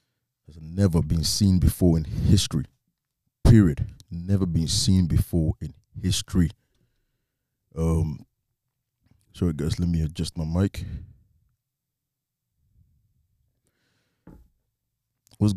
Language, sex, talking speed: English, male, 90 wpm